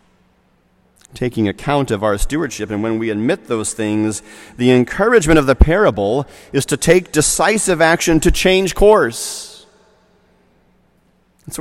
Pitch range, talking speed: 105-170 Hz, 130 wpm